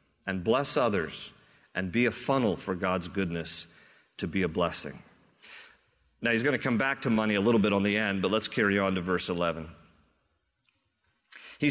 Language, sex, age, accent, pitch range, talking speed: English, male, 40-59, American, 105-135 Hz, 185 wpm